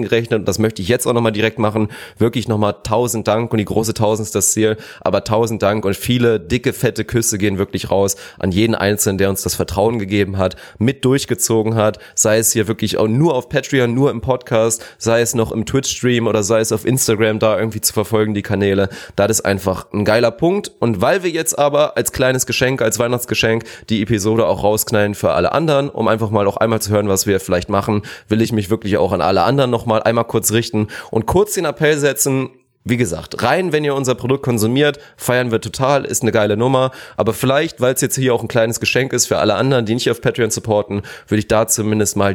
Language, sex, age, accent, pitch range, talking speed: German, male, 30-49, German, 105-125 Hz, 230 wpm